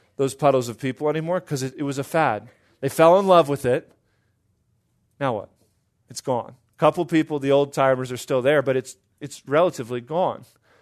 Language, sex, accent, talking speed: English, male, American, 195 wpm